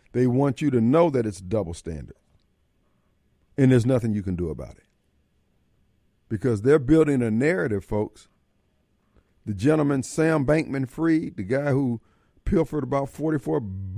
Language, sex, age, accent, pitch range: Japanese, male, 50-69, American, 100-155 Hz